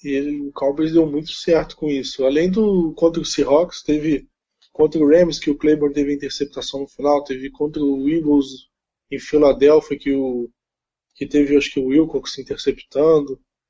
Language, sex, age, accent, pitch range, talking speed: Portuguese, male, 20-39, Brazilian, 140-160 Hz, 165 wpm